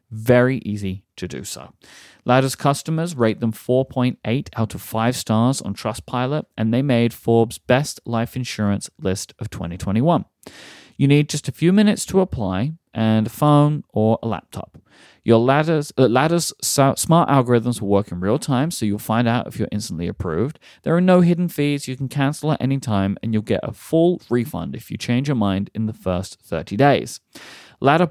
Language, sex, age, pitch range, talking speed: English, male, 30-49, 110-145 Hz, 180 wpm